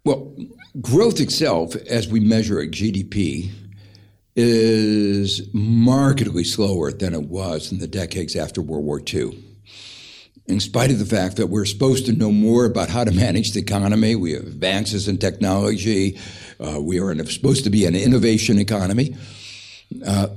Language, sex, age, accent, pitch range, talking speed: English, male, 60-79, American, 95-120 Hz, 155 wpm